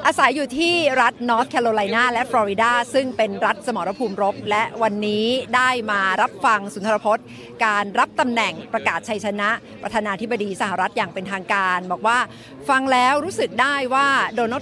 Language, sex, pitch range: Thai, female, 205-260 Hz